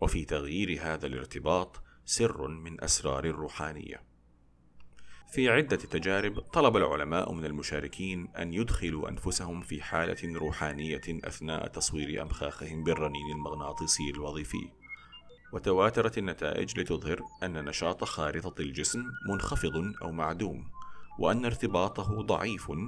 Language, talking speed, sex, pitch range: Arabic, 105 wpm, male, 75-95 Hz